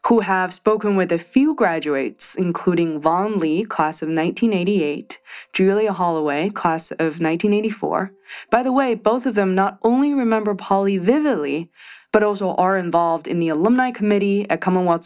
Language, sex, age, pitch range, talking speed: English, female, 20-39, 175-225 Hz, 155 wpm